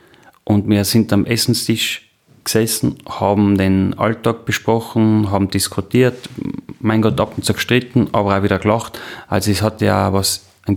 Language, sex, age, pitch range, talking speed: German, male, 30-49, 95-110 Hz, 155 wpm